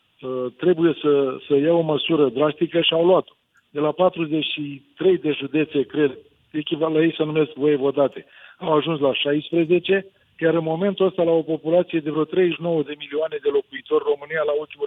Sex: male